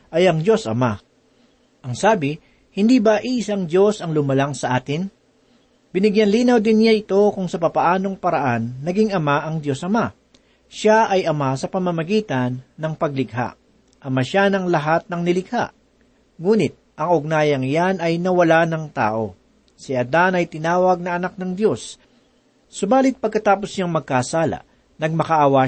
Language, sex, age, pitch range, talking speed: Filipino, male, 40-59, 145-200 Hz, 145 wpm